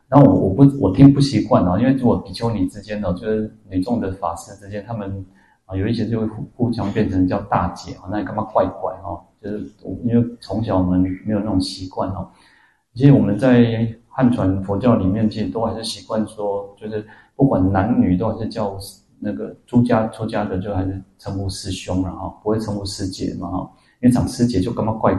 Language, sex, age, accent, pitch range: Chinese, male, 30-49, native, 95-120 Hz